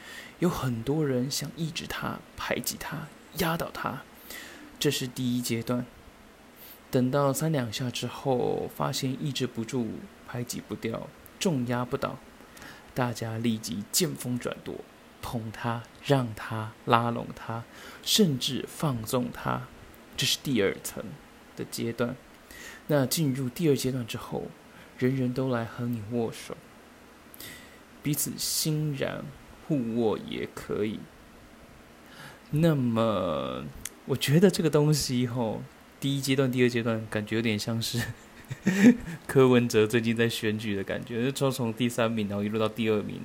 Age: 20-39